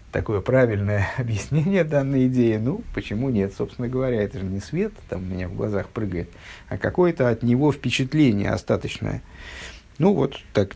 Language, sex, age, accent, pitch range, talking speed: Russian, male, 50-69, native, 100-135 Hz, 160 wpm